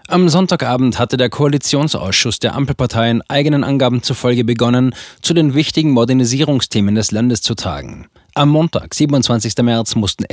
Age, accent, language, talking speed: 20-39, German, German, 140 wpm